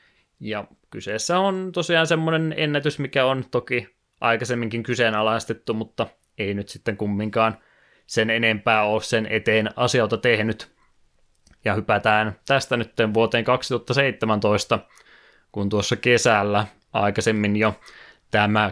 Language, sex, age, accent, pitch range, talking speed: Finnish, male, 20-39, native, 105-120 Hz, 110 wpm